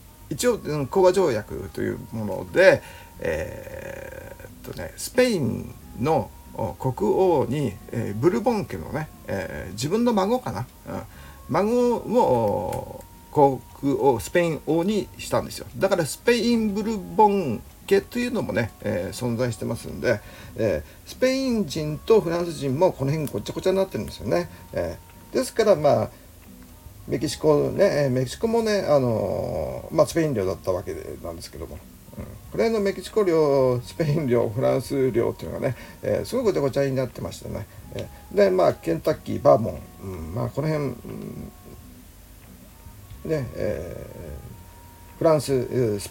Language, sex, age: Japanese, male, 50-69